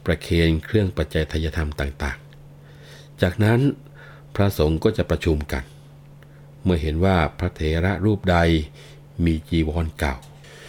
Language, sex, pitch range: Thai, male, 75-95 Hz